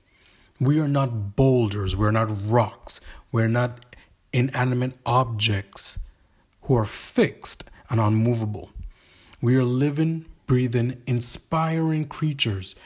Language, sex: English, male